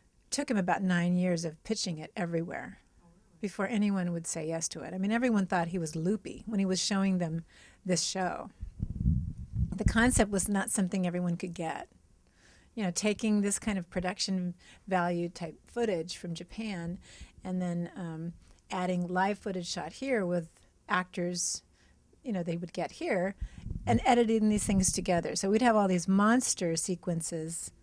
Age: 40-59